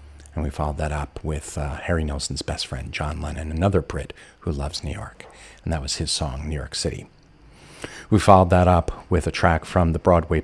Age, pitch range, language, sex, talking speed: 50-69, 75-95 Hz, English, male, 215 wpm